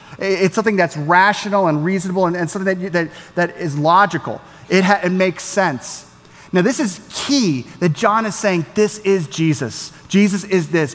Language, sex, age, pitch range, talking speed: English, male, 30-49, 140-185 Hz, 185 wpm